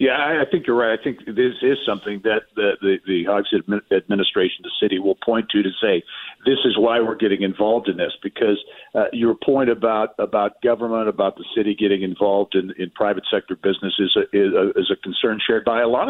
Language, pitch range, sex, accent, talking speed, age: English, 105-125 Hz, male, American, 230 wpm, 50-69